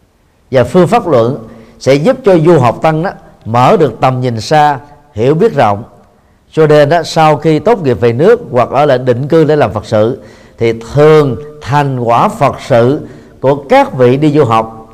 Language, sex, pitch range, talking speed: Vietnamese, male, 115-155 Hz, 195 wpm